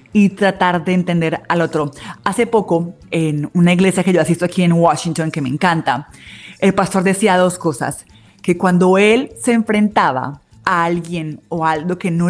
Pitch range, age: 165-205 Hz, 30-49